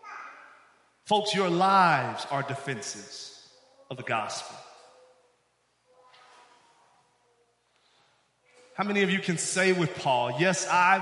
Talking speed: 100 wpm